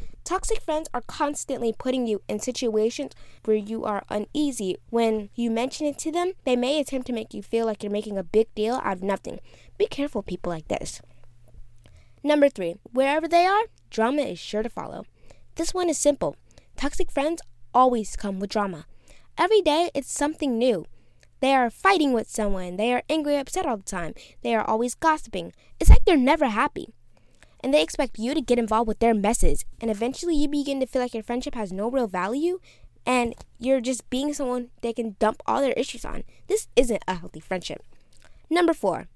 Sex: female